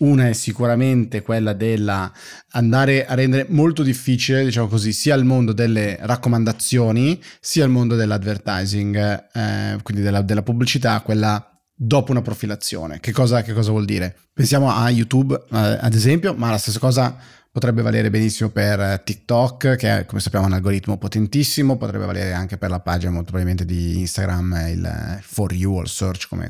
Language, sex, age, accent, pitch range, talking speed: Italian, male, 30-49, native, 105-125 Hz, 170 wpm